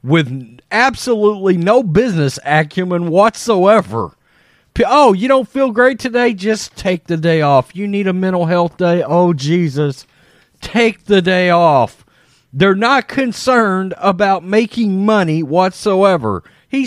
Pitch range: 135-200 Hz